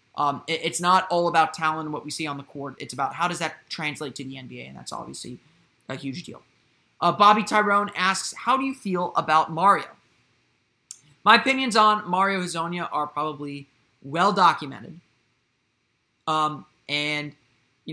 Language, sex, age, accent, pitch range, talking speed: English, male, 30-49, American, 150-190 Hz, 170 wpm